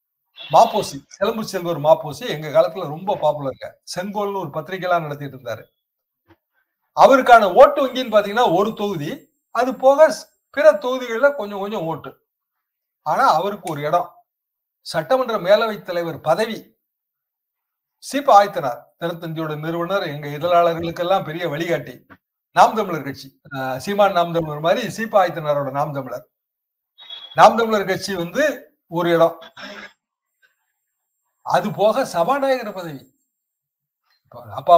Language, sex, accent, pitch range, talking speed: Tamil, male, native, 165-230 Hz, 90 wpm